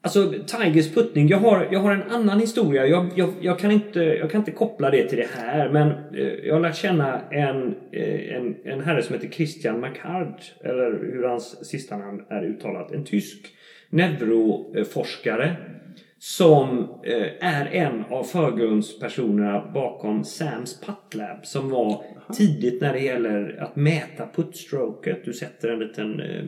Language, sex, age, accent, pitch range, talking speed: Swedish, male, 30-49, native, 135-180 Hz, 150 wpm